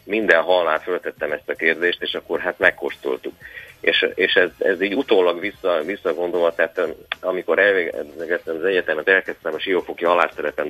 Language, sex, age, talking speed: Hungarian, male, 30-49, 150 wpm